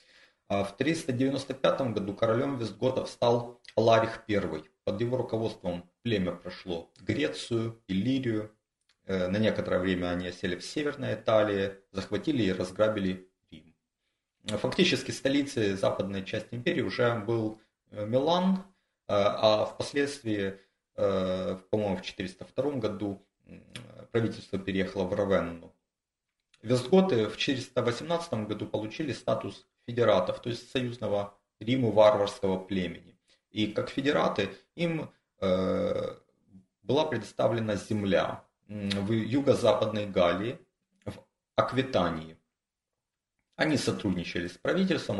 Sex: male